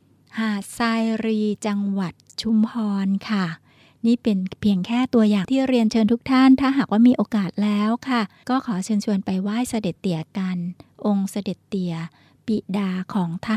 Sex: female